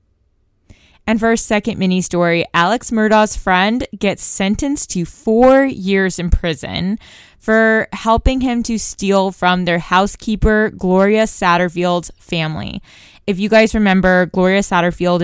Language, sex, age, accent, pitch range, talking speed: English, female, 20-39, American, 155-195 Hz, 130 wpm